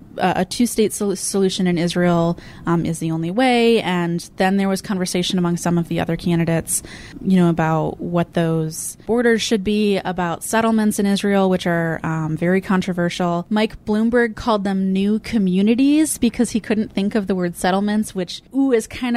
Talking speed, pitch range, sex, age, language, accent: 175 wpm, 175-220 Hz, female, 20-39, English, American